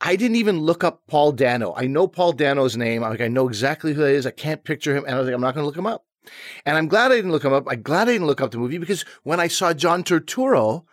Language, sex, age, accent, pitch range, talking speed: English, male, 30-49, American, 120-165 Hz, 305 wpm